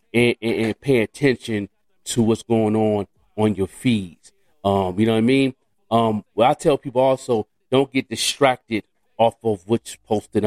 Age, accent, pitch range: 40-59, American, 105-120 Hz